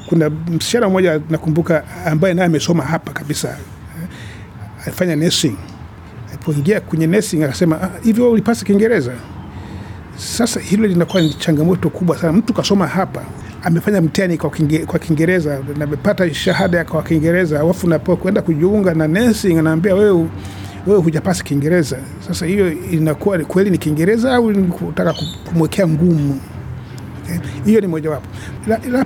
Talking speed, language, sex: 115 wpm, Swahili, male